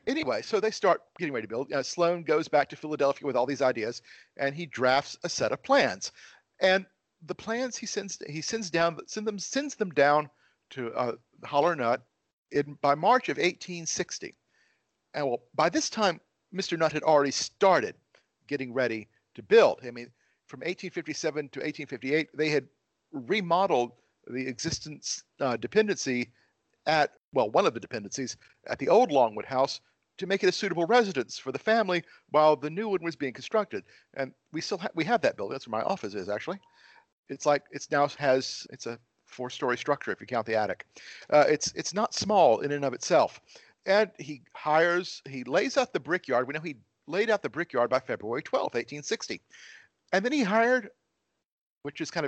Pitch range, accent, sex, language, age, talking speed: 140-195 Hz, American, male, English, 50-69, 185 wpm